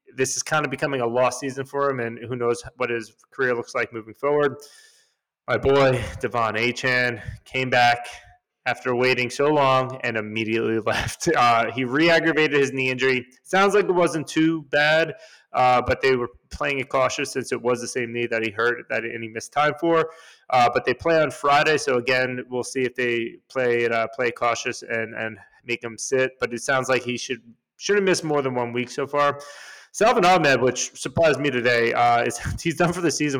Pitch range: 120-145 Hz